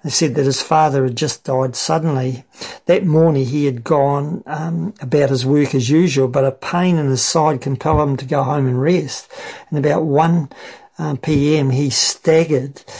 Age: 50-69